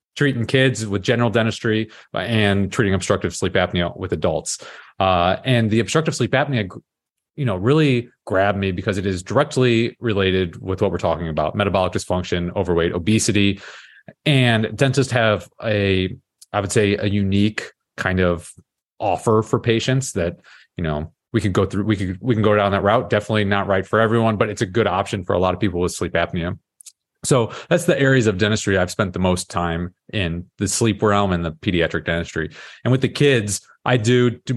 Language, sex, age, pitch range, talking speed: English, male, 30-49, 90-110 Hz, 190 wpm